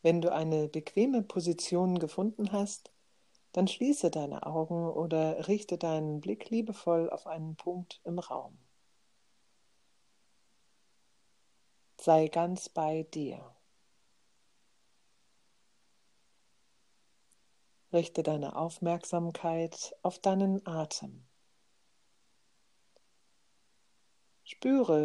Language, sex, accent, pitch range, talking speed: German, female, German, 155-190 Hz, 75 wpm